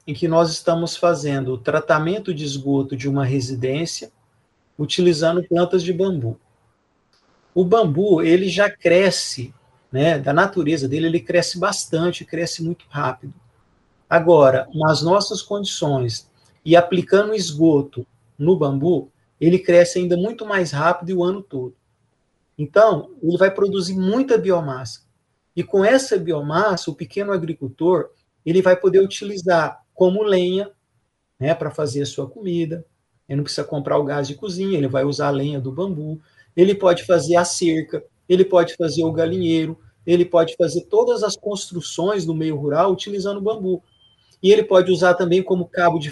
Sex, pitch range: male, 145-185 Hz